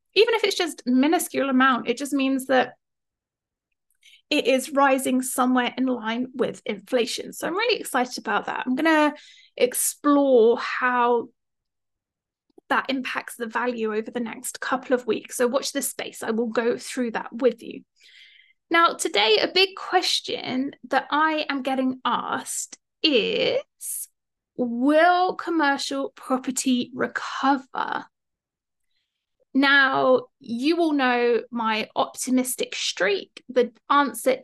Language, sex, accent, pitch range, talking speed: English, female, British, 245-310 Hz, 125 wpm